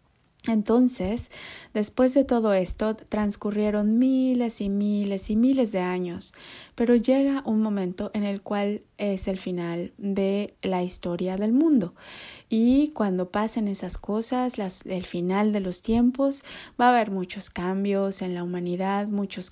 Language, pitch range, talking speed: Spanish, 190-220 Hz, 145 wpm